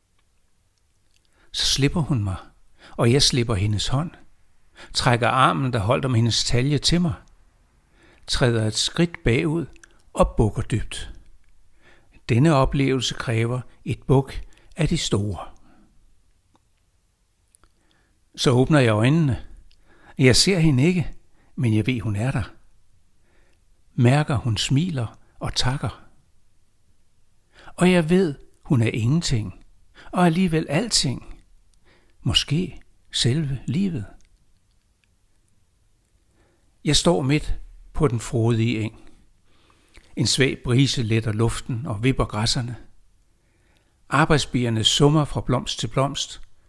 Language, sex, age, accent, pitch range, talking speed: Danish, male, 60-79, native, 95-135 Hz, 110 wpm